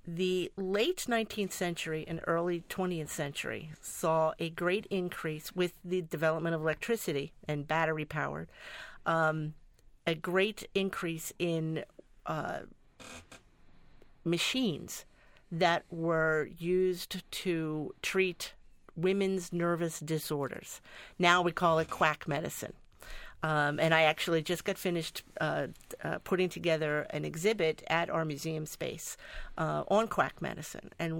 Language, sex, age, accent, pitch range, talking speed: English, female, 50-69, American, 155-185 Hz, 120 wpm